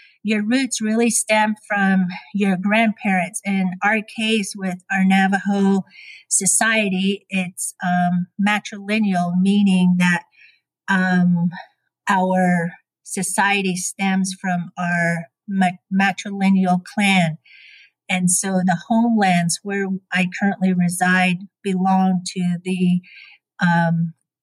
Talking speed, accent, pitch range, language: 95 wpm, American, 180-200 Hz, English